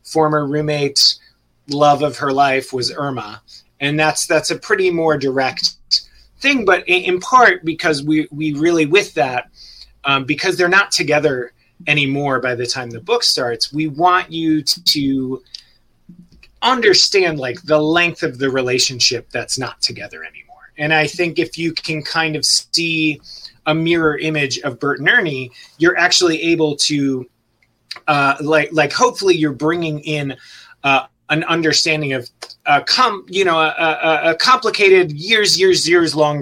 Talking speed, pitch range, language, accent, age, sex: 155 wpm, 130-165 Hz, English, American, 30-49, male